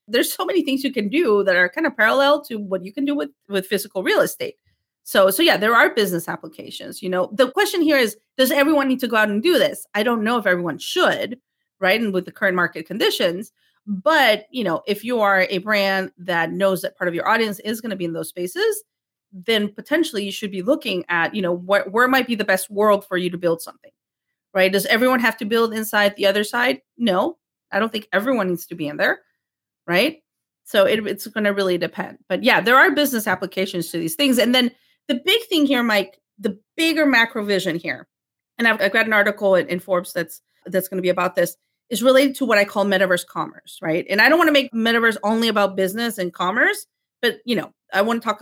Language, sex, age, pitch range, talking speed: English, female, 30-49, 190-255 Hz, 240 wpm